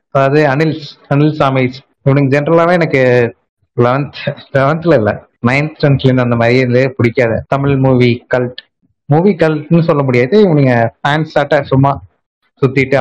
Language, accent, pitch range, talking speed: Tamil, native, 120-140 Hz, 105 wpm